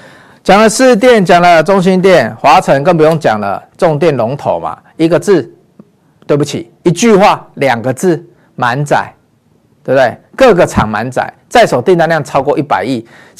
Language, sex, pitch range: Chinese, male, 145-210 Hz